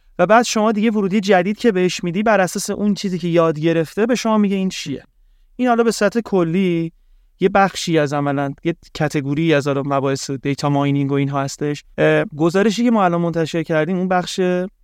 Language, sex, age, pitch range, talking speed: Persian, male, 30-49, 150-185 Hz, 195 wpm